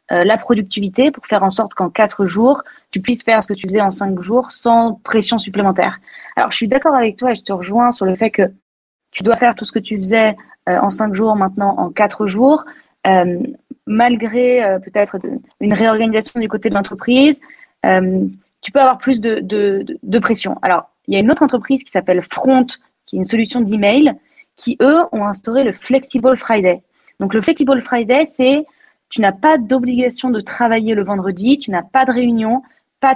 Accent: French